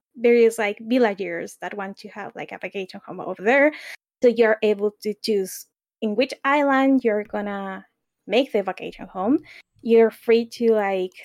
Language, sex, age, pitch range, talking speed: English, female, 20-39, 215-265 Hz, 170 wpm